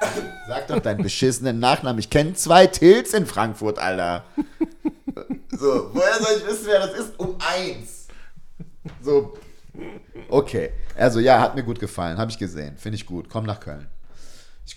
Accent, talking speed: German, 165 wpm